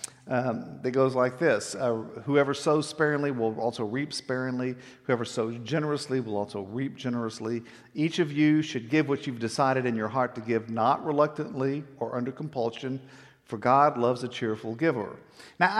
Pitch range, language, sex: 120-150 Hz, English, male